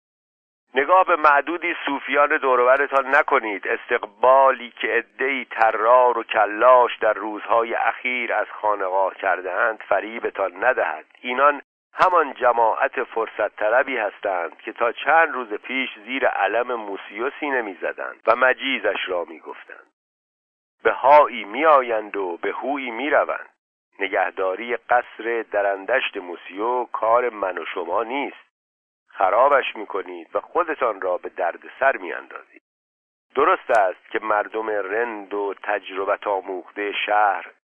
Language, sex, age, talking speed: Persian, male, 50-69, 125 wpm